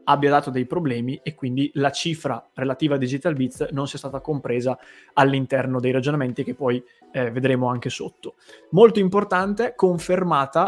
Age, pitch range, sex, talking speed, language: 20-39, 130-160 Hz, male, 155 wpm, Italian